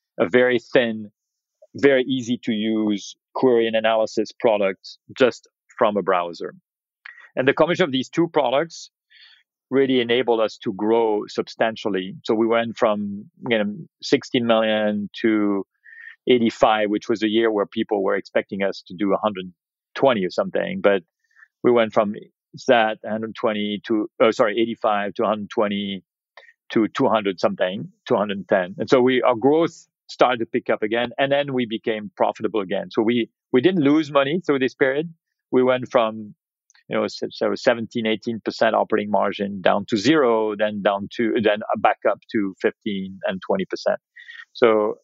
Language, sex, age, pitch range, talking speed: English, male, 40-59, 105-130 Hz, 160 wpm